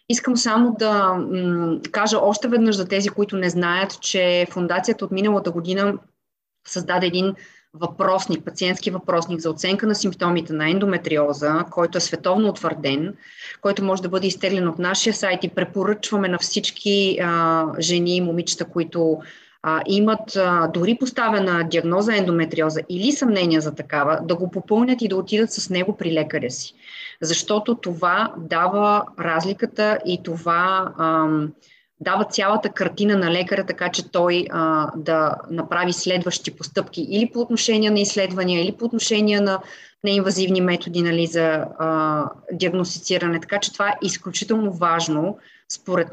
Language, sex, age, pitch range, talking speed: Bulgarian, female, 30-49, 170-205 Hz, 145 wpm